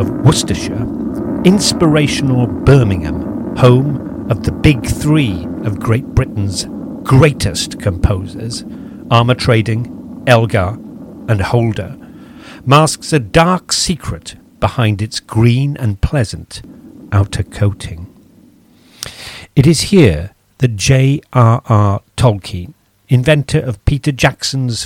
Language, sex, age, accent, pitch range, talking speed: English, male, 50-69, British, 100-145 Hz, 100 wpm